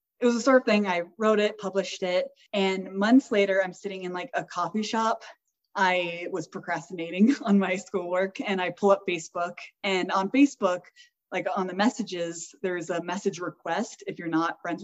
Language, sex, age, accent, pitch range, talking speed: English, female, 20-39, American, 175-210 Hz, 190 wpm